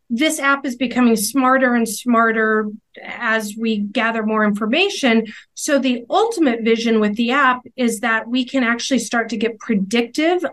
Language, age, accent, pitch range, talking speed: English, 30-49, American, 215-265 Hz, 160 wpm